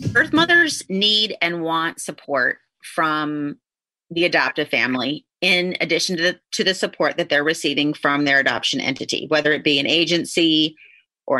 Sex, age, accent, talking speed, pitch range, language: female, 30-49, American, 155 wpm, 155-185 Hz, English